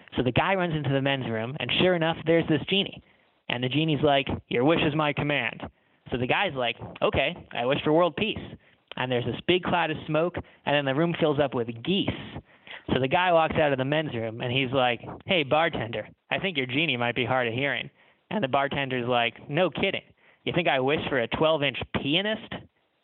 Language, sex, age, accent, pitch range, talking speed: English, male, 20-39, American, 120-155 Hz, 220 wpm